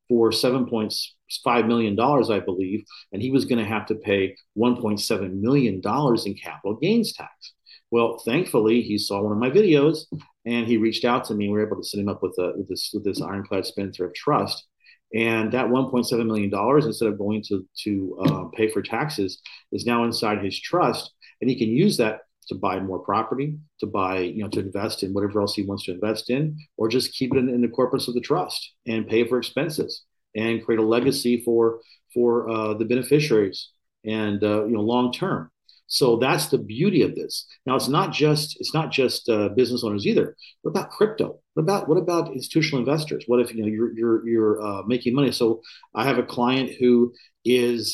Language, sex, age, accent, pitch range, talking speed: English, male, 40-59, American, 105-130 Hz, 205 wpm